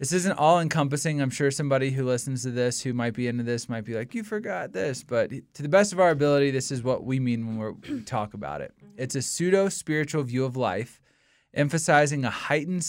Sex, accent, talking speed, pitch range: male, American, 220 wpm, 125-155 Hz